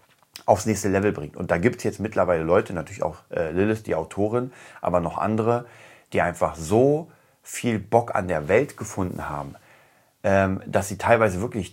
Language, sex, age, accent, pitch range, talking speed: German, male, 30-49, German, 95-115 Hz, 180 wpm